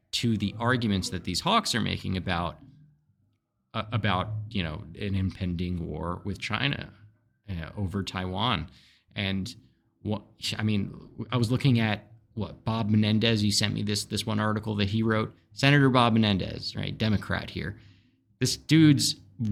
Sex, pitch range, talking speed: male, 100-120 Hz, 155 wpm